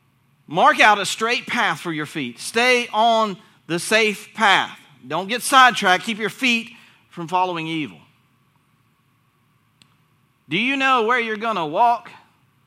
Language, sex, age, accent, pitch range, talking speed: English, male, 40-59, American, 145-215 Hz, 140 wpm